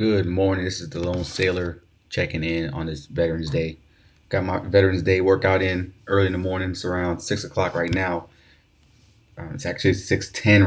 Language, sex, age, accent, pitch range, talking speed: English, male, 20-39, American, 90-115 Hz, 185 wpm